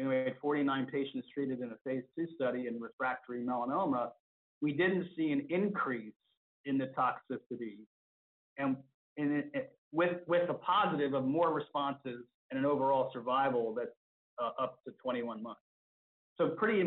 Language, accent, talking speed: English, American, 155 wpm